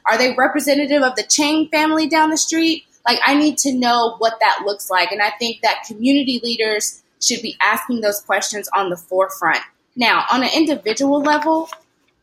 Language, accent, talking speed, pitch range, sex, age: English, American, 185 wpm, 220-290 Hz, female, 20-39